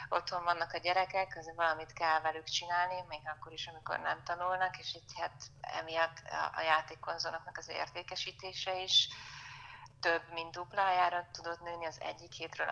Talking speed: 150 wpm